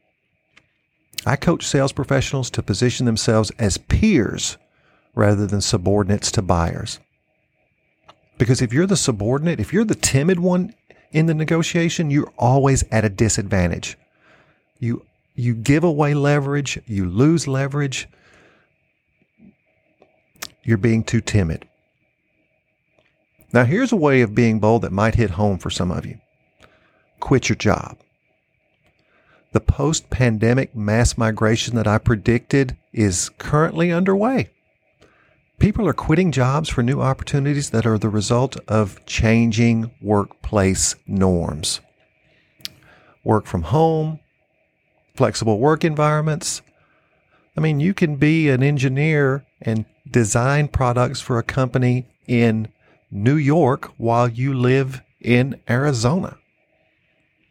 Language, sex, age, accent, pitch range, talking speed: English, male, 50-69, American, 110-145 Hz, 120 wpm